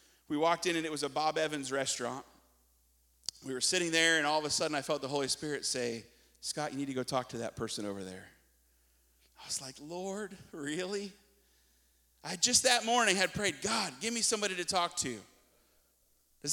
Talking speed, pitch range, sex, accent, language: 200 wpm, 145-215 Hz, male, American, English